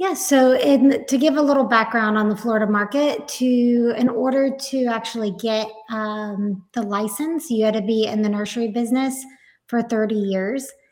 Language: English